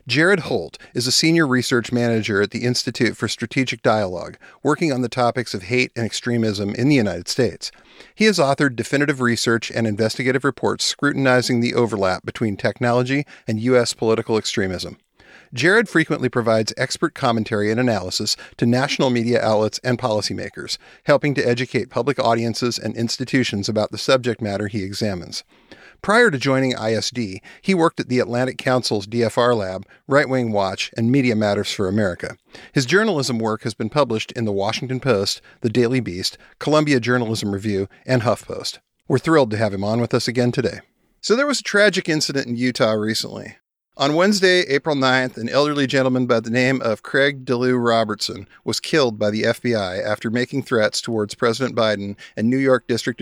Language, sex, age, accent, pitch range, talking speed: English, male, 50-69, American, 110-130 Hz, 175 wpm